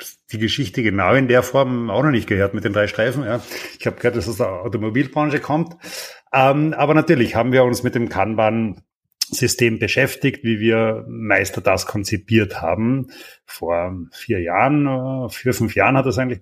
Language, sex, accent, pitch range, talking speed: German, male, German, 105-130 Hz, 185 wpm